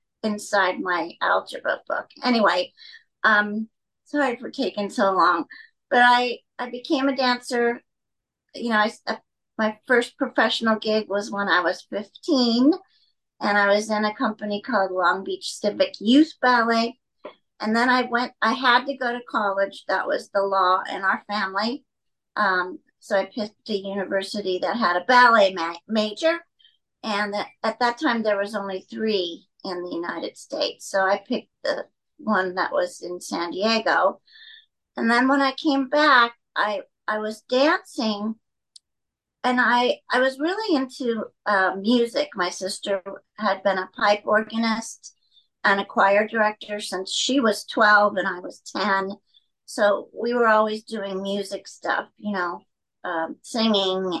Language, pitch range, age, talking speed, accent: English, 200-250 Hz, 50-69, 155 wpm, American